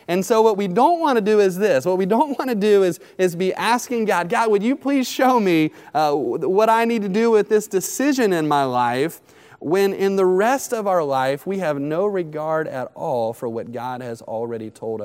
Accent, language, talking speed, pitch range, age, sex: American, English, 230 wpm, 120-185 Hz, 30-49, male